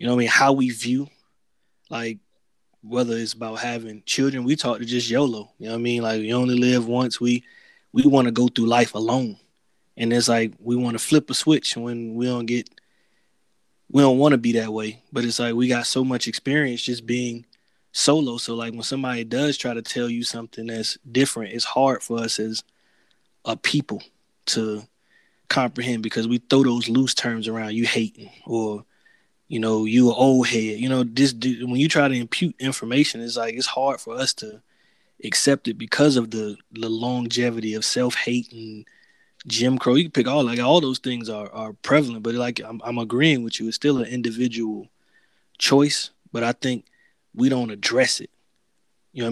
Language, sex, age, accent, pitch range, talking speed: English, male, 20-39, American, 115-130 Hz, 200 wpm